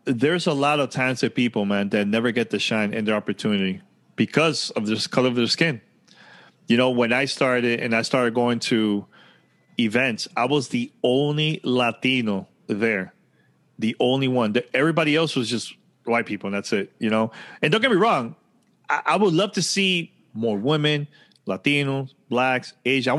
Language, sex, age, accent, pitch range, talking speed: English, male, 30-49, American, 110-140 Hz, 180 wpm